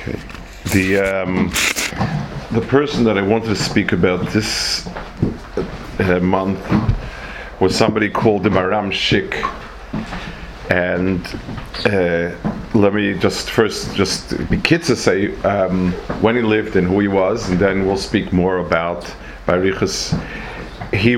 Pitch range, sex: 90-105 Hz, male